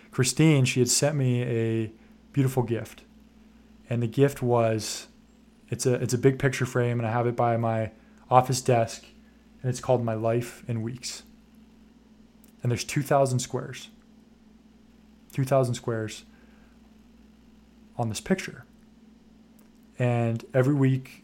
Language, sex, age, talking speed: English, male, 20-39, 130 wpm